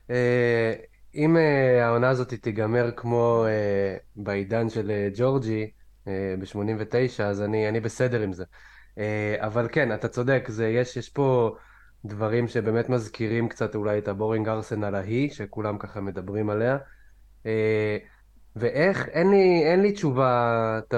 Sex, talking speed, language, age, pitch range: male, 145 wpm, Hebrew, 20-39, 110-130 Hz